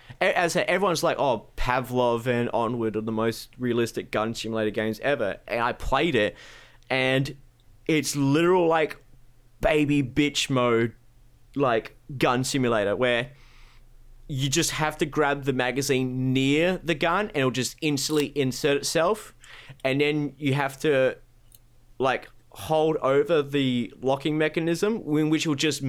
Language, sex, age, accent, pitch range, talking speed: English, male, 20-39, Australian, 120-145 Hz, 140 wpm